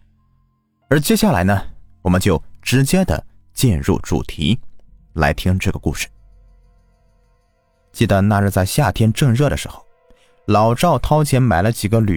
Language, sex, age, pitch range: Chinese, male, 30-49, 90-125 Hz